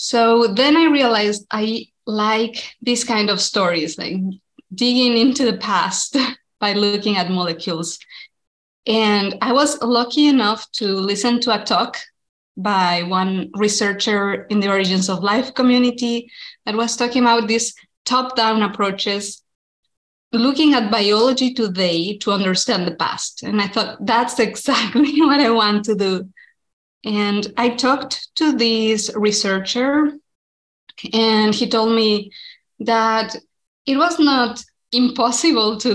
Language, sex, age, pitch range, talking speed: English, female, 20-39, 200-245 Hz, 130 wpm